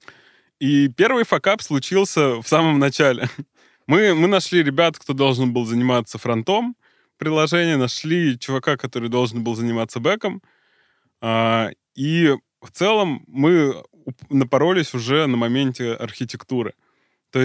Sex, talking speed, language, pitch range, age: male, 115 wpm, Russian, 120-155 Hz, 20-39